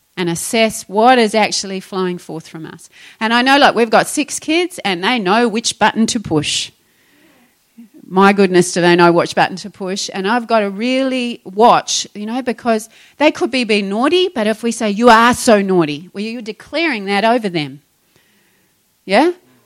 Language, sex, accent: English, female, Australian